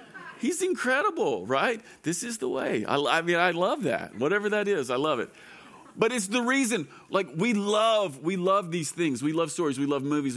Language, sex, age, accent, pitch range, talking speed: English, male, 40-59, American, 150-195 Hz, 210 wpm